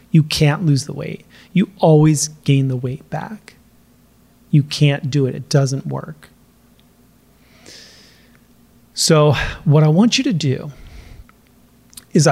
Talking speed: 125 wpm